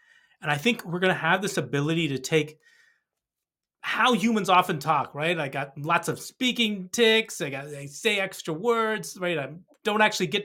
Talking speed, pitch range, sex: 190 wpm, 145-195 Hz, male